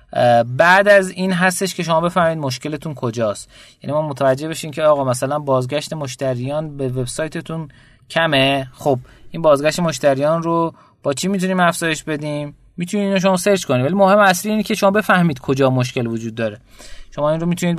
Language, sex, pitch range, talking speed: Persian, male, 130-170 Hz, 170 wpm